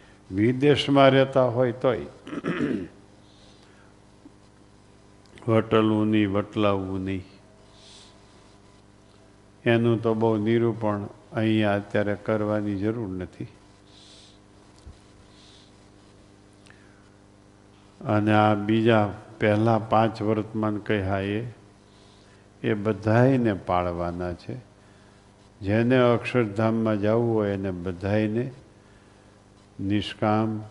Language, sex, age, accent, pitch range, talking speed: Gujarati, male, 50-69, native, 100-110 Hz, 70 wpm